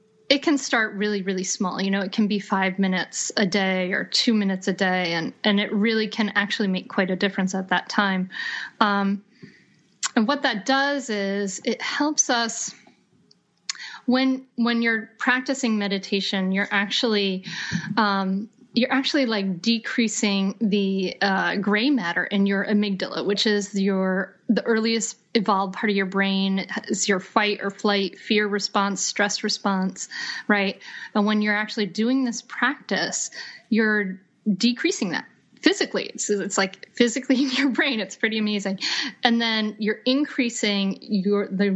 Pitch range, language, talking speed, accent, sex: 195-235 Hz, English, 150 wpm, American, female